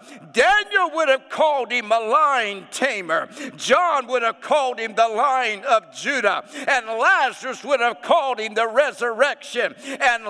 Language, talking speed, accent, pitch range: English, 150 wpm, American, 265-310 Hz